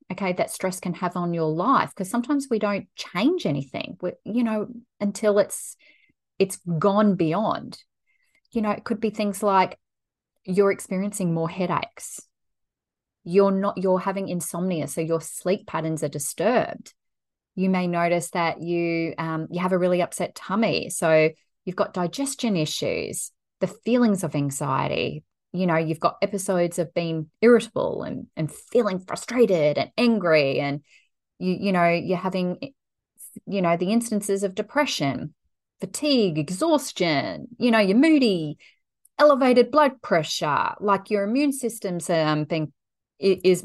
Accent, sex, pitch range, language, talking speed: Australian, female, 170-225 Hz, English, 145 wpm